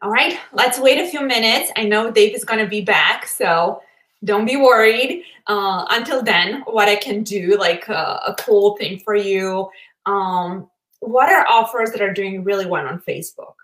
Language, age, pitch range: English, 20-39, 190-245 Hz